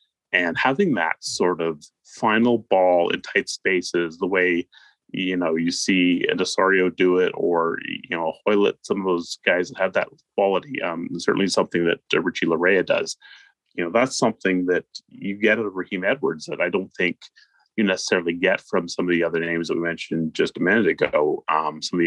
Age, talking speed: 30-49, 200 wpm